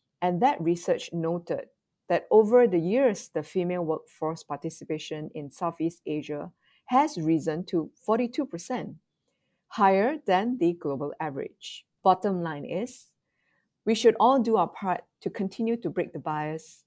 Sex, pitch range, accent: female, 160-220 Hz, Malaysian